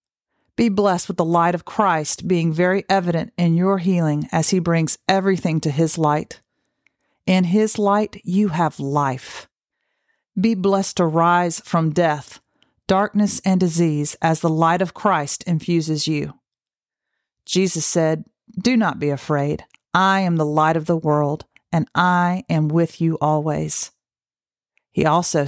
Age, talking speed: 40-59, 150 wpm